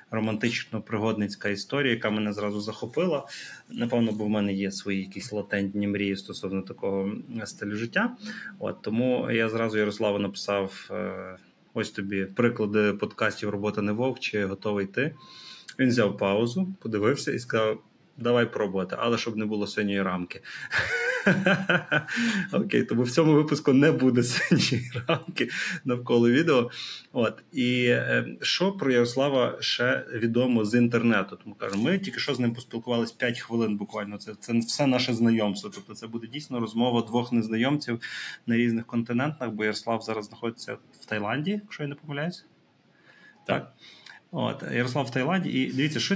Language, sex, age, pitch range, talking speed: Ukrainian, male, 20-39, 110-130 Hz, 150 wpm